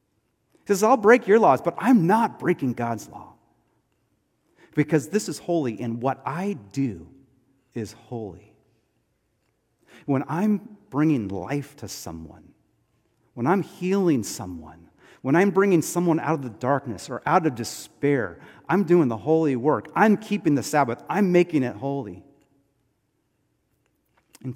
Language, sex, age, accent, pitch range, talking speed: English, male, 40-59, American, 125-180 Hz, 140 wpm